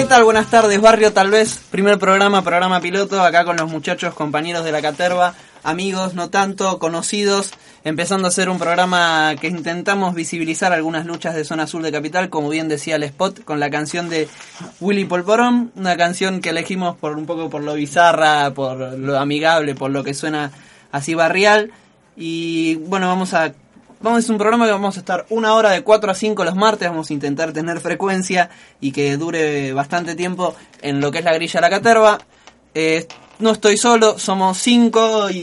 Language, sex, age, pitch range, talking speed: Spanish, male, 20-39, 160-195 Hz, 195 wpm